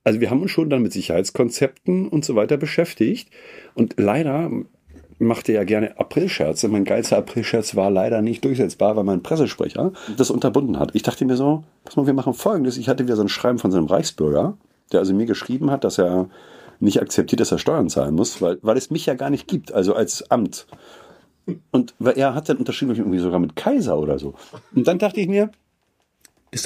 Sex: male